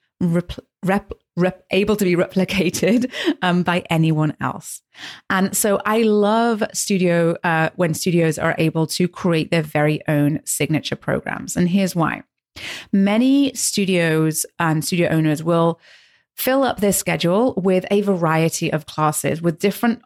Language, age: English, 30-49